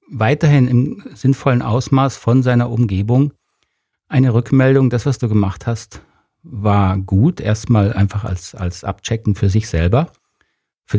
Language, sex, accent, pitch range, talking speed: German, male, German, 105-130 Hz, 135 wpm